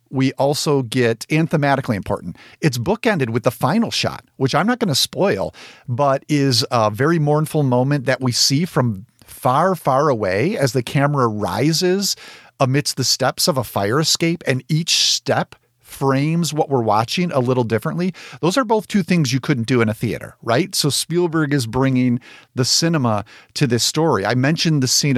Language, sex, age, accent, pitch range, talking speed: English, male, 50-69, American, 120-155 Hz, 180 wpm